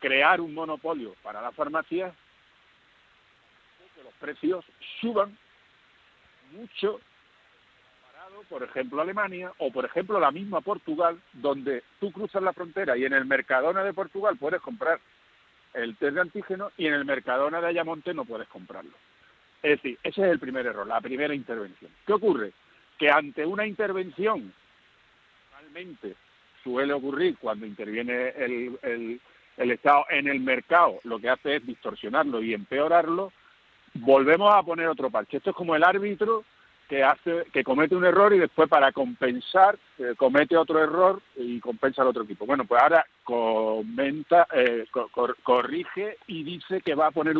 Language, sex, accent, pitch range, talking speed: Spanish, male, Spanish, 130-190 Hz, 155 wpm